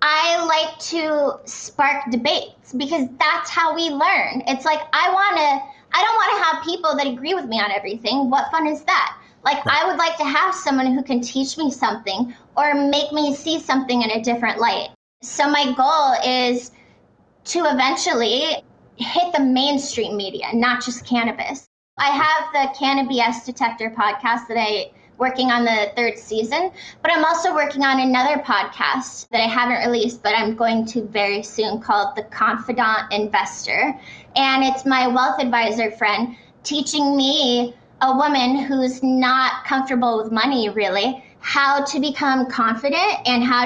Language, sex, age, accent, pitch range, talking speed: English, female, 20-39, American, 235-295 Hz, 165 wpm